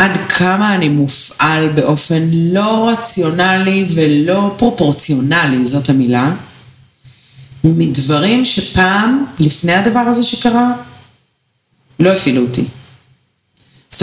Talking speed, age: 90 wpm, 40-59